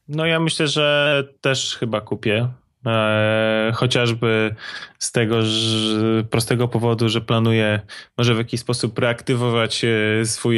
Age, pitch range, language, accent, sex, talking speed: 20-39, 110-140 Hz, Polish, native, male, 120 wpm